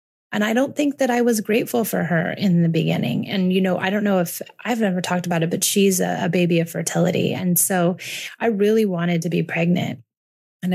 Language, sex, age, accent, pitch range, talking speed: English, female, 30-49, American, 155-185 Hz, 230 wpm